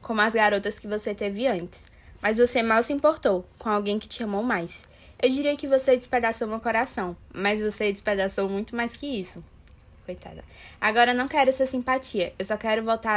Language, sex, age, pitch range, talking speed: Portuguese, female, 10-29, 195-240 Hz, 190 wpm